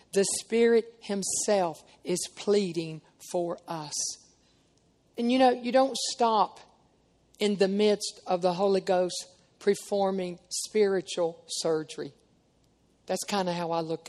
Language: English